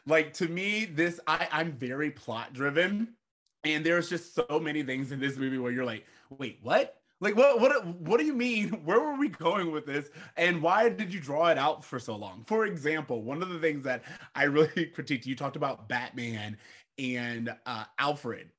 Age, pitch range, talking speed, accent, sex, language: 20-39, 135-190 Hz, 200 wpm, American, male, English